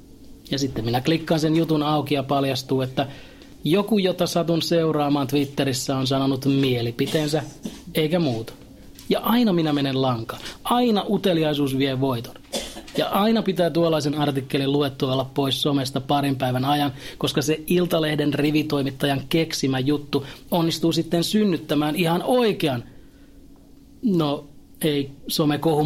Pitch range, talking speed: 130-170 Hz, 130 wpm